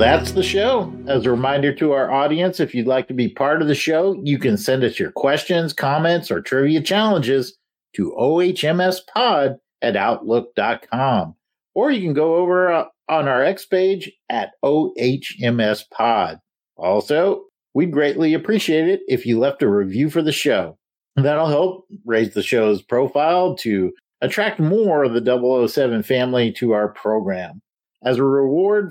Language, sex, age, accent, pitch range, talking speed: English, male, 50-69, American, 125-165 Hz, 155 wpm